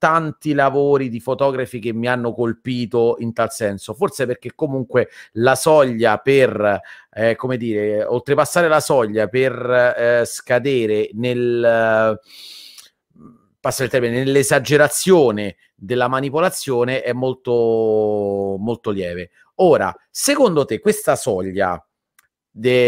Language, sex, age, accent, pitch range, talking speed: Italian, male, 40-59, native, 110-135 Hz, 110 wpm